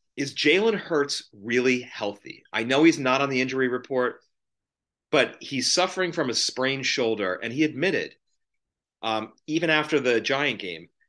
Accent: American